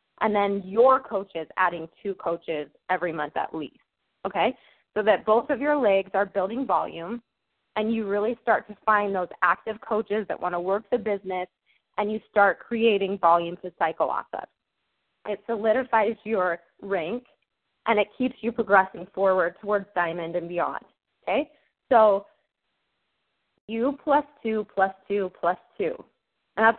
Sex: female